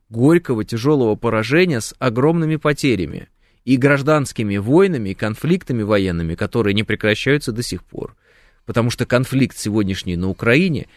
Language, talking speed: Russian, 130 wpm